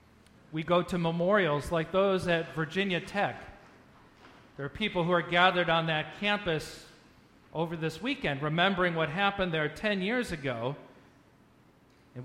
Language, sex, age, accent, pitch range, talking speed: English, male, 40-59, American, 145-190 Hz, 140 wpm